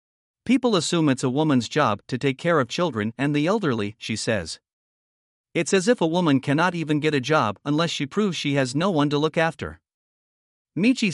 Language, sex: English, male